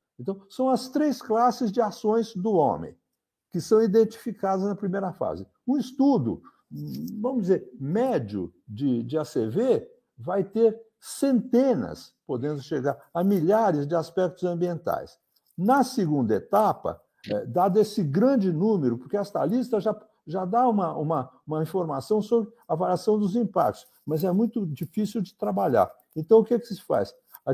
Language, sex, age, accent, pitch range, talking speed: Portuguese, male, 60-79, Brazilian, 170-225 Hz, 150 wpm